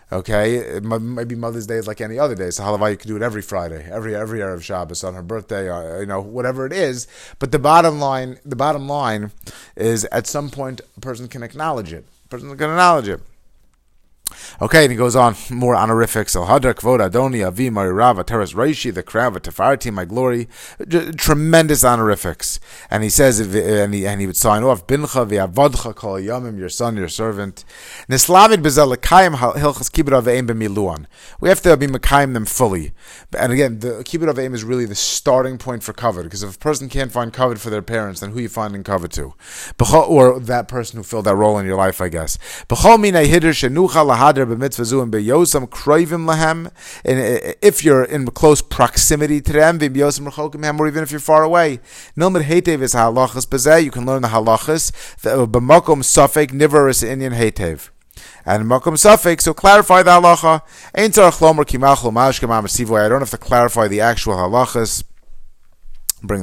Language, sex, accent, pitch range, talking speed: English, male, American, 110-150 Hz, 145 wpm